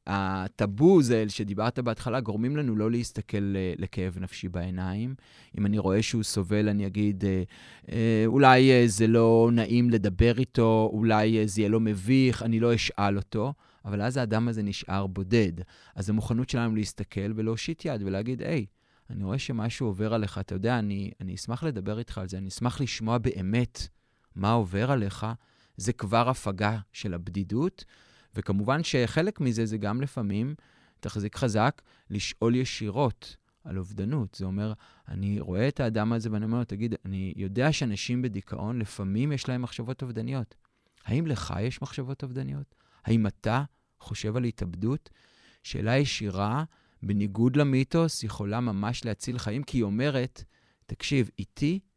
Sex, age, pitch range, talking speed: male, 30-49, 100-125 Hz, 150 wpm